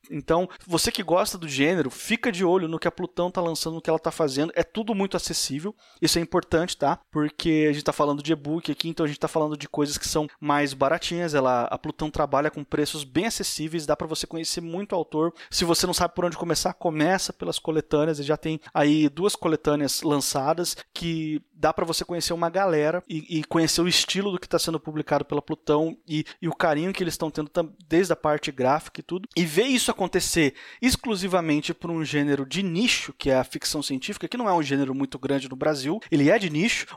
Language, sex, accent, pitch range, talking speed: Portuguese, male, Brazilian, 155-190 Hz, 225 wpm